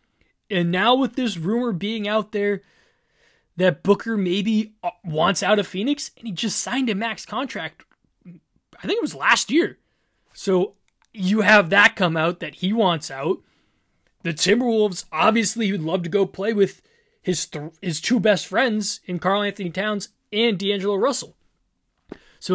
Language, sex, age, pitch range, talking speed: English, male, 20-39, 170-230 Hz, 160 wpm